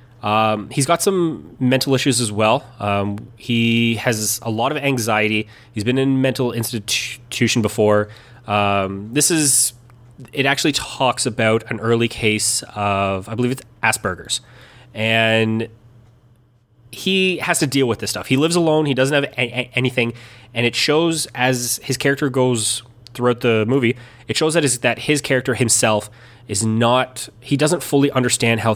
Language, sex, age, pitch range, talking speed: English, male, 20-39, 110-130 Hz, 165 wpm